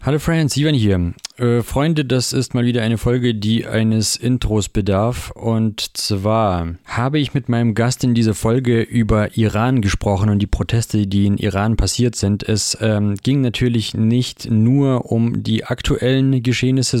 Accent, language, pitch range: German, German, 110-130 Hz